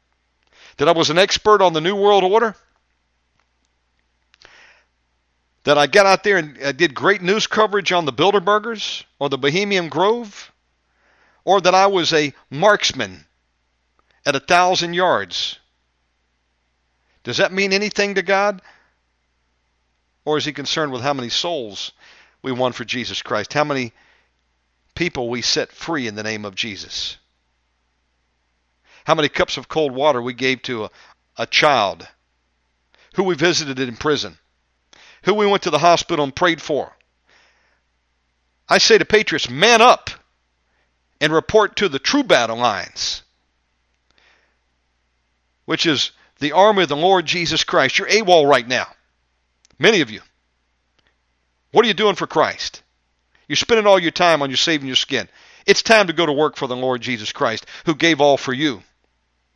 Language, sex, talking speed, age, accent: English, male, 155 wpm, 50-69, American